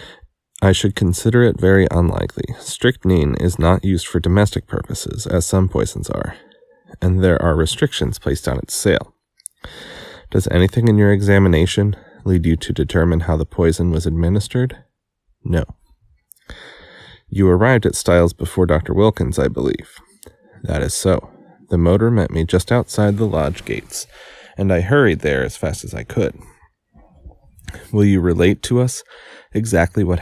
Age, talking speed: 30-49, 155 wpm